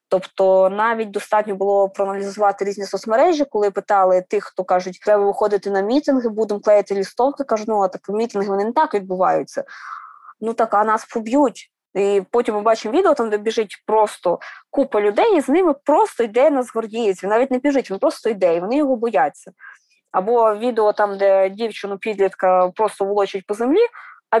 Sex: female